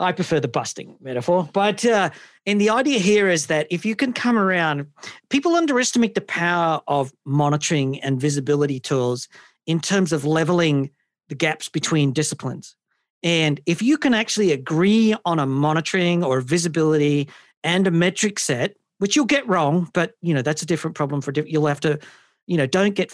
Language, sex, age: English, male, 40-59